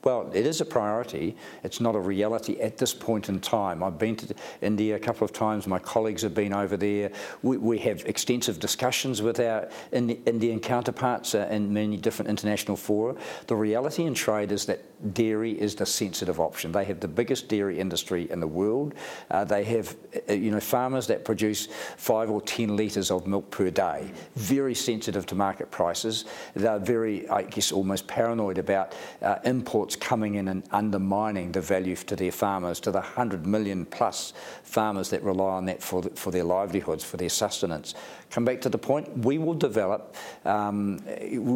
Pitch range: 100-115 Hz